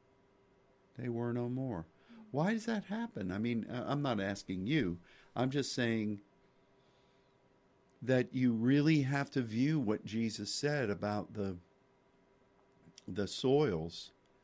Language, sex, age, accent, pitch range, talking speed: English, male, 50-69, American, 100-125 Hz, 125 wpm